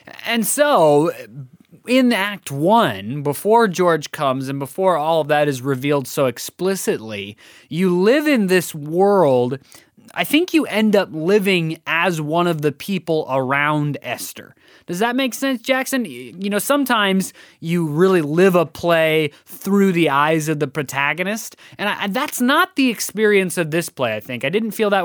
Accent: American